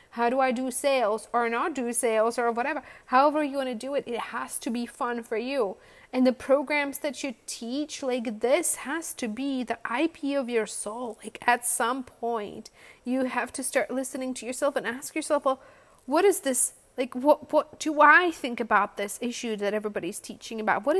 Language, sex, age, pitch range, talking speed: English, female, 30-49, 225-275 Hz, 205 wpm